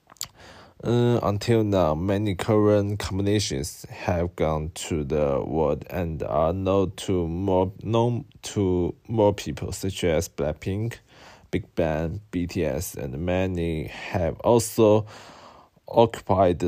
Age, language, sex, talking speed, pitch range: 20-39, English, male, 110 wpm, 90-110 Hz